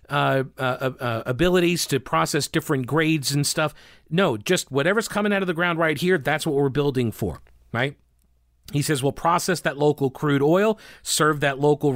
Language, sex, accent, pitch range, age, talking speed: English, male, American, 135-165 Hz, 40-59, 185 wpm